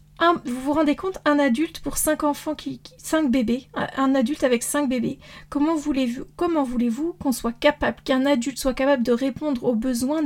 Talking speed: 200 wpm